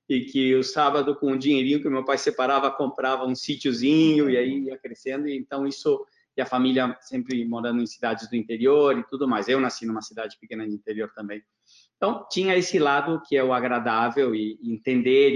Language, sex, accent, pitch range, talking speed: Portuguese, male, Brazilian, 125-155 Hz, 200 wpm